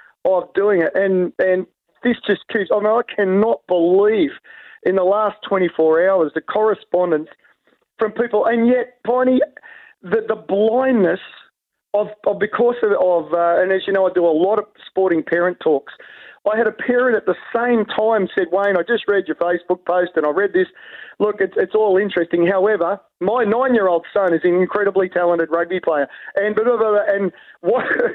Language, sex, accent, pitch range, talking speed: English, male, Australian, 175-215 Hz, 185 wpm